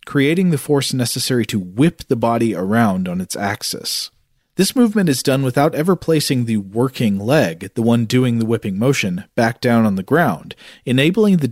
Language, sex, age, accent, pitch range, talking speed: English, male, 40-59, American, 115-155 Hz, 180 wpm